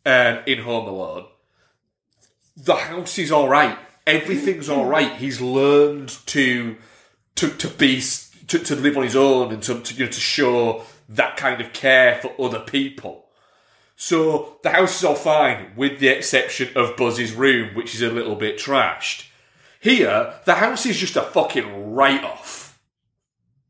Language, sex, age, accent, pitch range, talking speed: English, male, 30-49, British, 125-165 Hz, 160 wpm